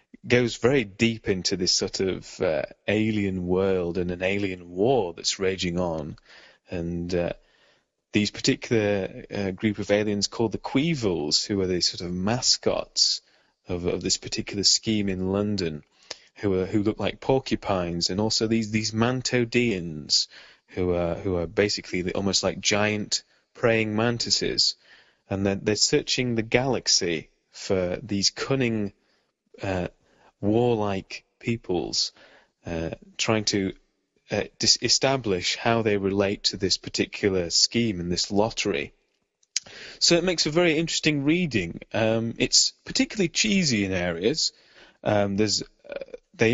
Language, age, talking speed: English, 30-49, 135 wpm